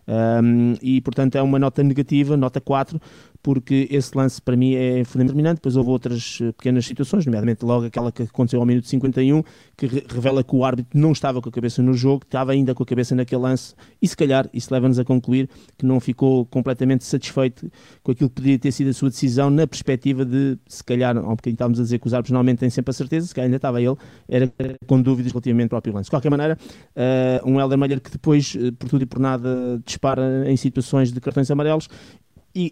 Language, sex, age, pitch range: Portuguese, male, 20-39, 120-135 Hz